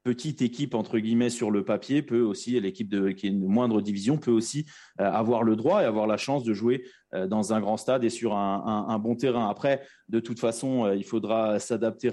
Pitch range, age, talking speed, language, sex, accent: 110-125 Hz, 30-49, 235 wpm, French, male, French